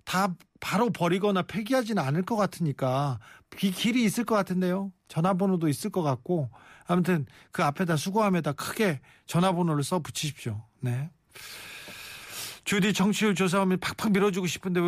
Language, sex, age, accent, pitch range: Korean, male, 40-59, native, 150-200 Hz